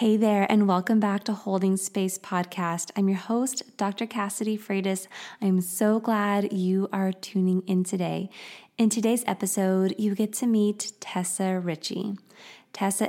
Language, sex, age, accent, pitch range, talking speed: English, female, 20-39, American, 180-205 Hz, 150 wpm